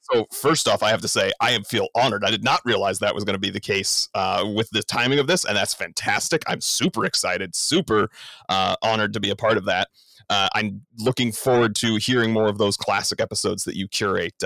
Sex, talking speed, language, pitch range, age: male, 235 wpm, English, 105-125 Hz, 30-49